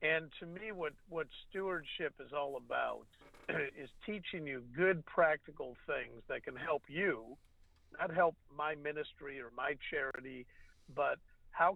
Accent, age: American, 50-69